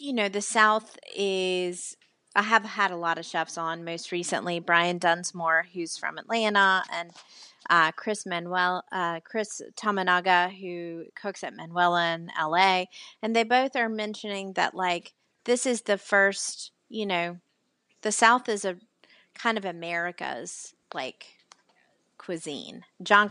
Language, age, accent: English, 30-49, American